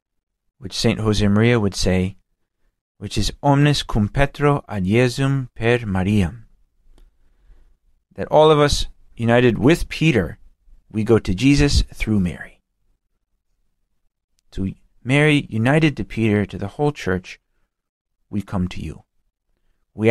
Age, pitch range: 40-59, 95-115 Hz